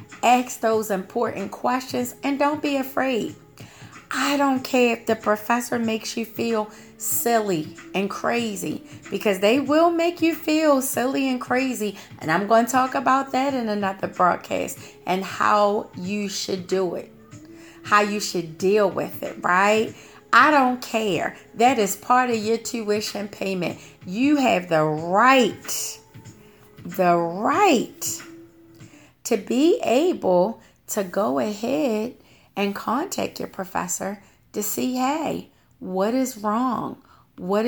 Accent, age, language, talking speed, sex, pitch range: American, 30-49, English, 135 wpm, female, 200-260 Hz